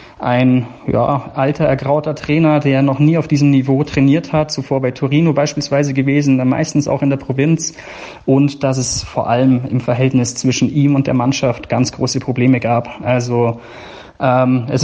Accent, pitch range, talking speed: German, 125-140 Hz, 175 wpm